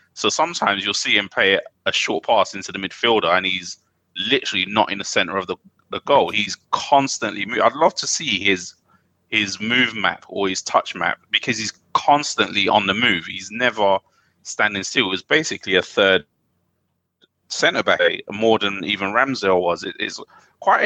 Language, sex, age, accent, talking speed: English, male, 30-49, British, 175 wpm